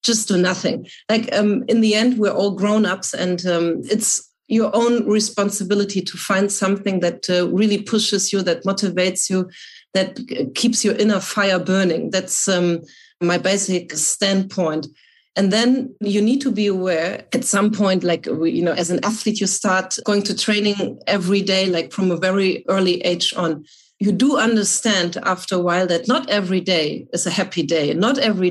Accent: German